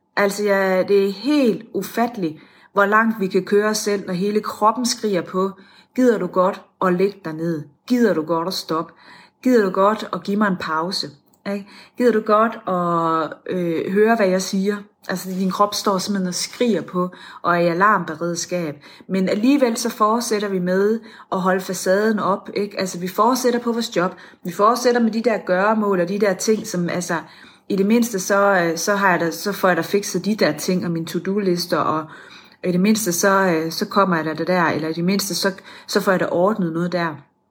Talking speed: 205 wpm